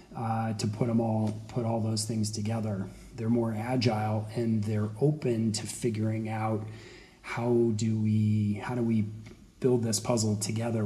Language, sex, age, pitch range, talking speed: English, male, 40-59, 110-125 Hz, 150 wpm